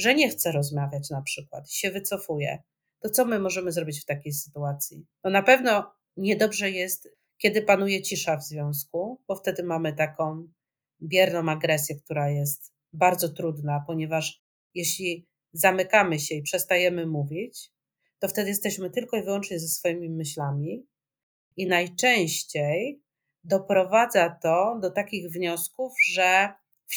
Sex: male